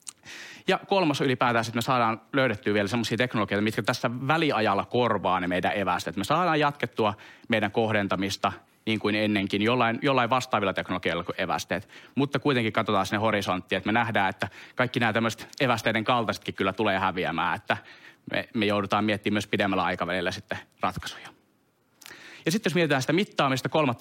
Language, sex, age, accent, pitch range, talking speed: Finnish, male, 30-49, native, 95-125 Hz, 160 wpm